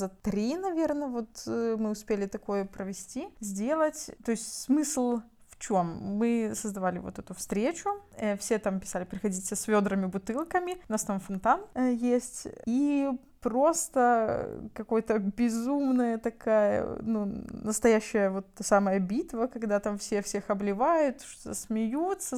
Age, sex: 20-39, female